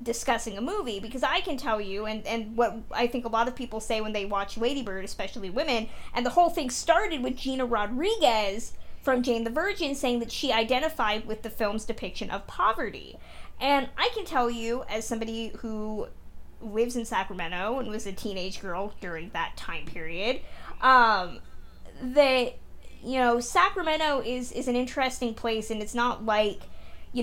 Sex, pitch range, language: female, 210-250 Hz, English